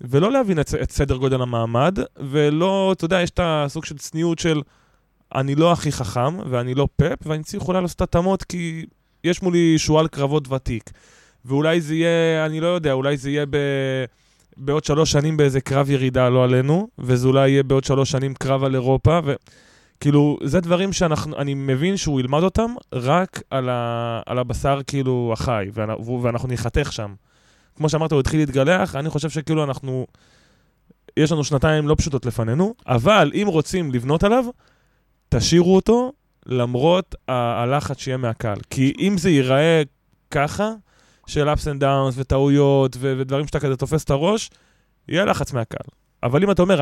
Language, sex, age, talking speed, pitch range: Hebrew, male, 20-39, 165 wpm, 130-165 Hz